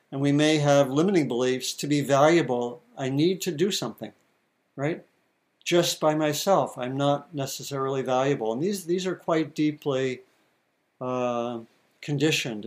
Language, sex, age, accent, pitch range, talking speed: English, male, 60-79, American, 140-170 Hz, 140 wpm